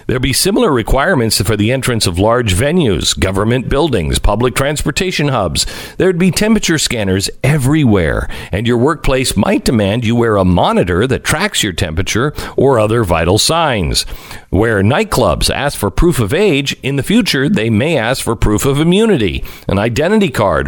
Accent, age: American, 50-69